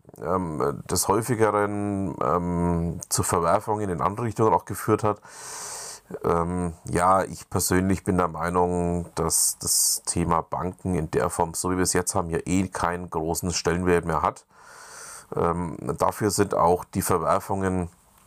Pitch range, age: 80-95 Hz, 30-49